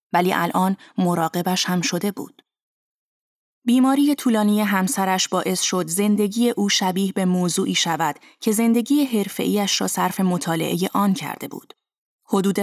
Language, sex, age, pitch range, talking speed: Persian, female, 20-39, 180-225 Hz, 130 wpm